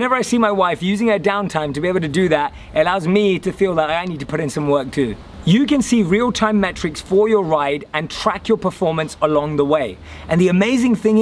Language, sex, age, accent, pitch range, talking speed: English, male, 30-49, British, 155-210 Hz, 255 wpm